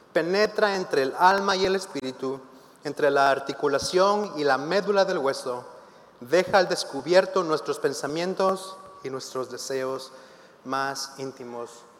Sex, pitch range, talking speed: male, 140-200 Hz, 125 wpm